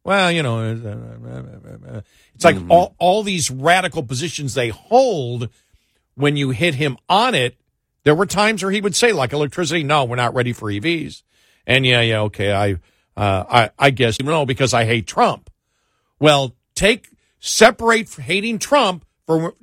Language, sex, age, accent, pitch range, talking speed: English, male, 50-69, American, 120-160 Hz, 165 wpm